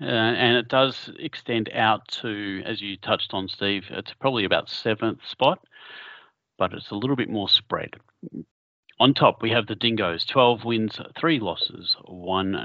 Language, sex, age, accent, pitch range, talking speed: English, male, 40-59, Australian, 95-120 Hz, 165 wpm